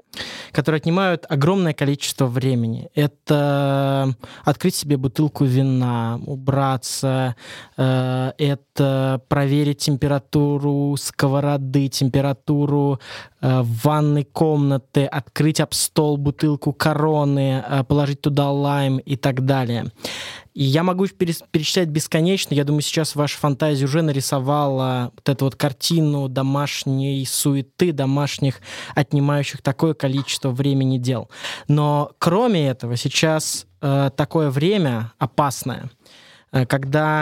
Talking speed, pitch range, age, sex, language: 100 wpm, 135-155 Hz, 20-39, male, Russian